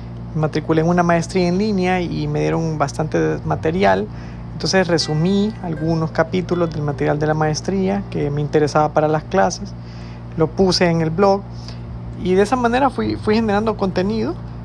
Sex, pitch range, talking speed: male, 100-170 Hz, 160 wpm